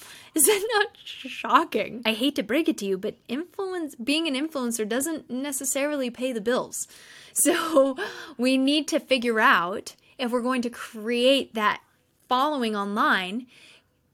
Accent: American